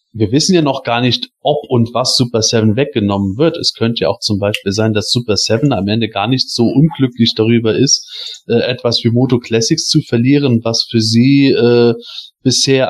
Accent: German